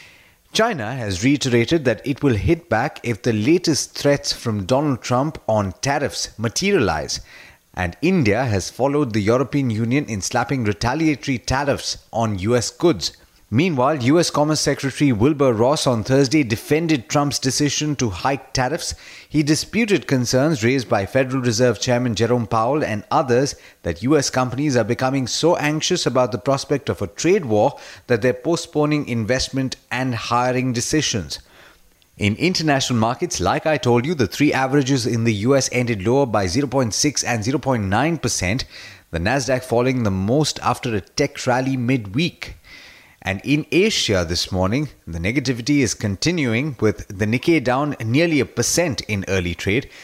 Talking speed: 150 wpm